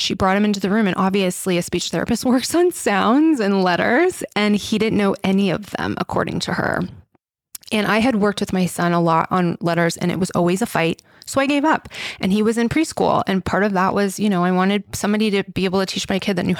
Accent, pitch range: American, 180-230 Hz